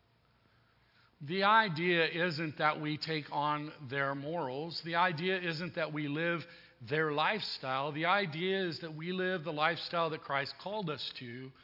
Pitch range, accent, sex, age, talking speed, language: 155-195 Hz, American, male, 40-59, 155 wpm, English